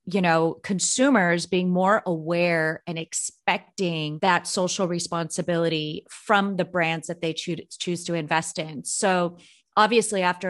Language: English